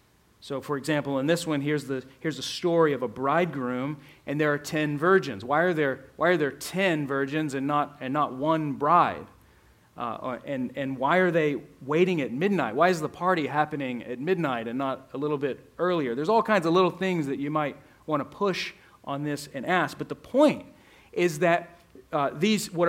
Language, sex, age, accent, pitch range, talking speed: English, male, 40-59, American, 140-180 Hz, 205 wpm